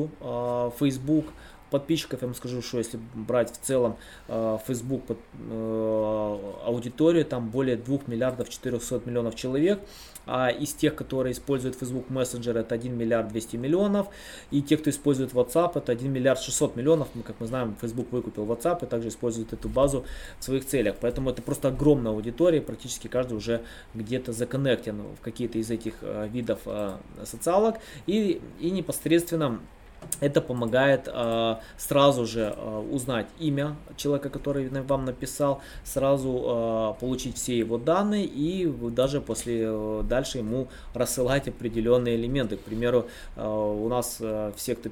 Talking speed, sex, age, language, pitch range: 140 wpm, male, 20-39, Russian, 115-140 Hz